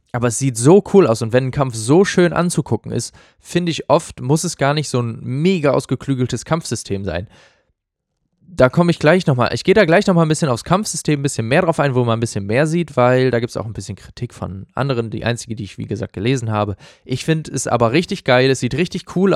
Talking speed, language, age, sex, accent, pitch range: 250 wpm, German, 20-39, male, German, 115-155 Hz